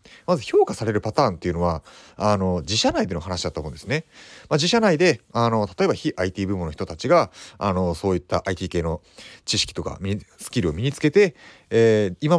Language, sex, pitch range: Japanese, male, 95-155 Hz